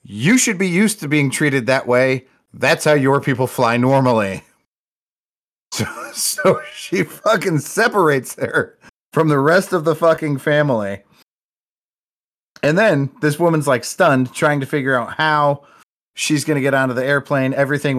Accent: American